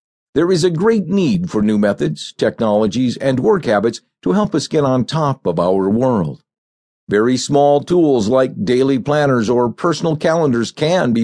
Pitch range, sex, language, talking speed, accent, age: 115-150 Hz, male, English, 170 wpm, American, 50-69